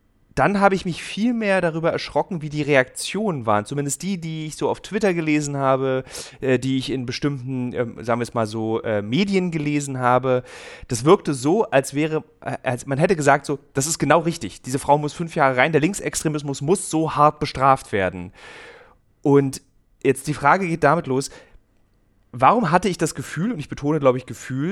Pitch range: 135-175 Hz